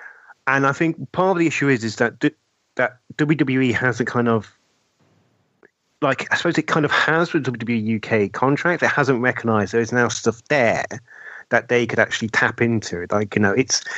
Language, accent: English, British